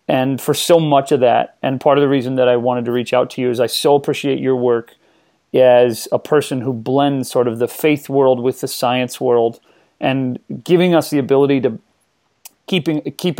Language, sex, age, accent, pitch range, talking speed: English, male, 30-49, American, 130-155 Hz, 205 wpm